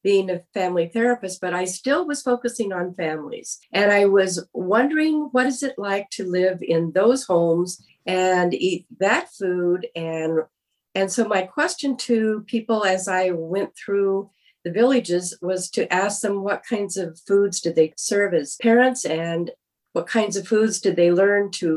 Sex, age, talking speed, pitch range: female, 50-69, 175 wpm, 170-220 Hz